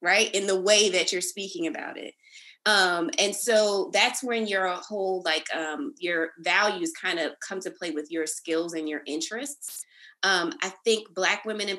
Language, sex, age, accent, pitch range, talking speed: English, female, 20-39, American, 175-220 Hz, 190 wpm